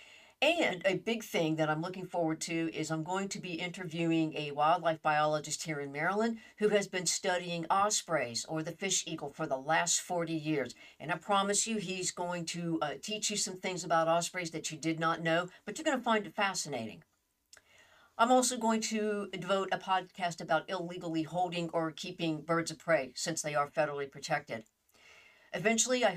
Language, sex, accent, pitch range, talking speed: English, female, American, 160-195 Hz, 190 wpm